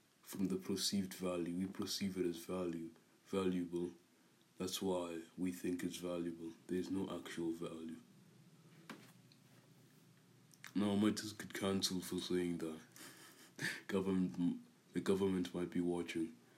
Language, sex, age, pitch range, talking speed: English, male, 20-39, 85-105 Hz, 125 wpm